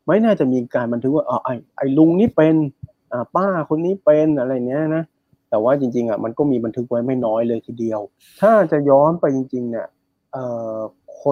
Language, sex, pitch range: Thai, male, 115-145 Hz